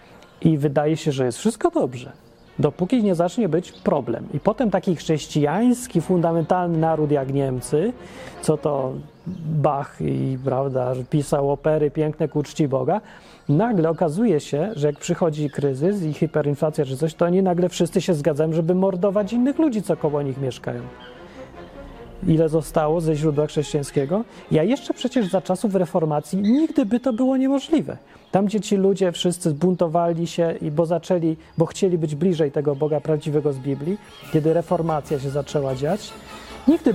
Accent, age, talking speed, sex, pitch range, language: native, 30-49, 160 wpm, male, 145-185 Hz, Polish